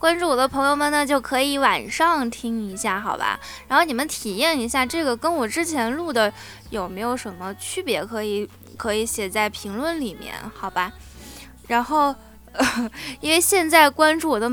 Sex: female